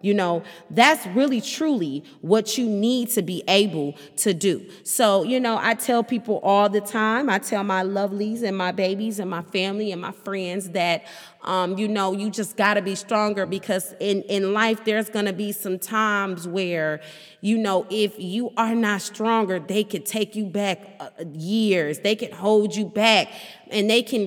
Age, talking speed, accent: 30-49, 190 wpm, American